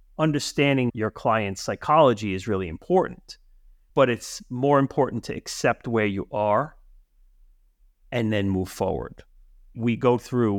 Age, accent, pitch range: 30-49, American, 95-130 Hz